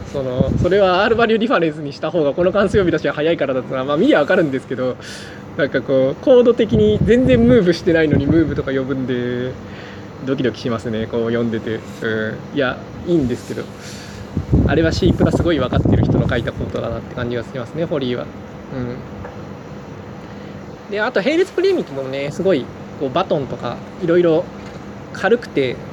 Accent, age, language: native, 20-39, Japanese